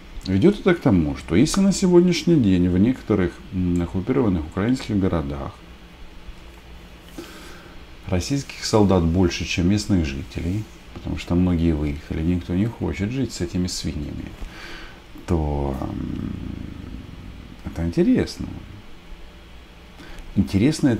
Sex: male